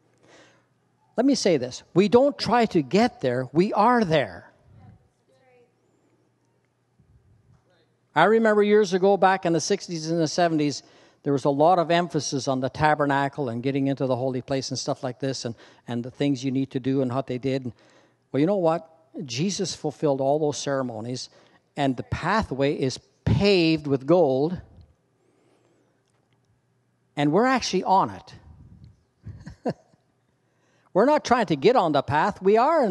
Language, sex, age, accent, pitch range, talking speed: English, male, 60-79, American, 130-190 Hz, 160 wpm